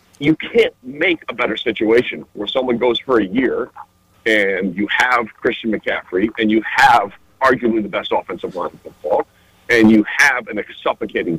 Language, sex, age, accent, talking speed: English, male, 50-69, American, 170 wpm